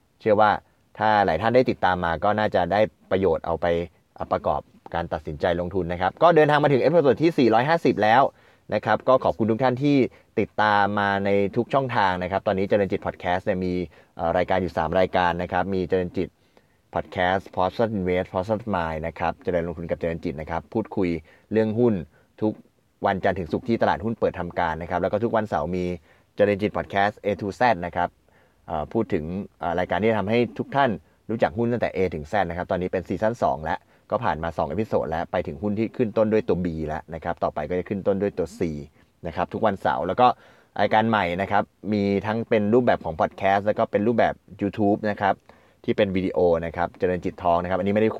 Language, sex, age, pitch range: Thai, male, 20-39, 90-110 Hz